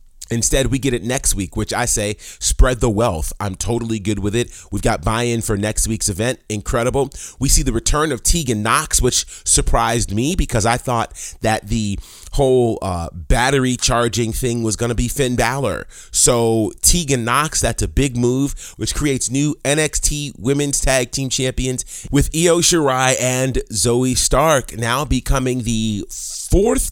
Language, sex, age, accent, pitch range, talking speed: English, male, 30-49, American, 100-130 Hz, 170 wpm